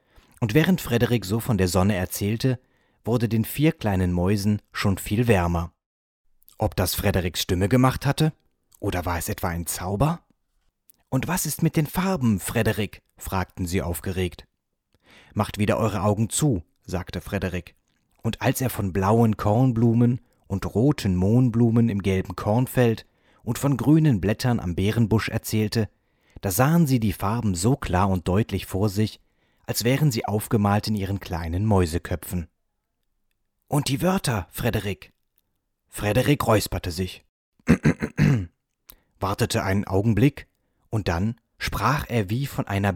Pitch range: 95-120 Hz